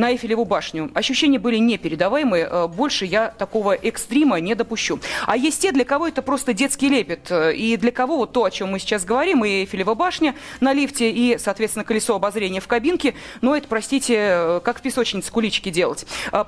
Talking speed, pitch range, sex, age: 180 wpm, 205-275 Hz, female, 30-49